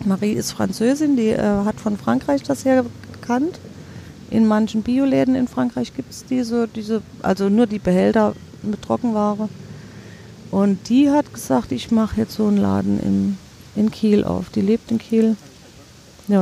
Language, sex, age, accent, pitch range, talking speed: German, female, 40-59, German, 180-250 Hz, 160 wpm